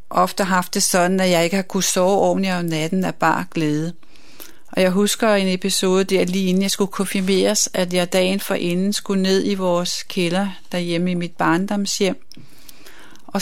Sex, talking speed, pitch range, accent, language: female, 190 wpm, 175-195 Hz, native, Danish